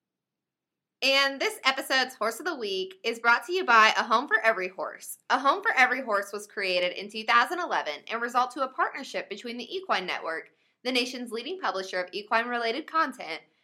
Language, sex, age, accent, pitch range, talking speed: English, female, 20-39, American, 195-260 Hz, 185 wpm